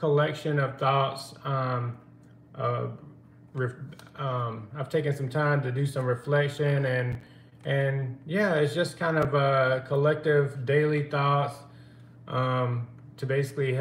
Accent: American